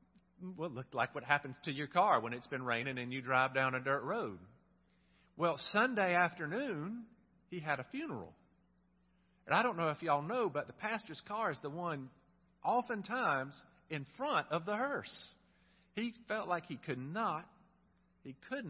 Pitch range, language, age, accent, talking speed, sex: 135-210 Hz, English, 50-69, American, 180 wpm, male